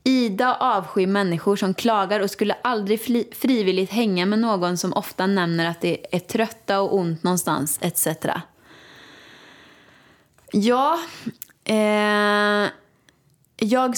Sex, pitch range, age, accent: female, 170-220 Hz, 20-39, native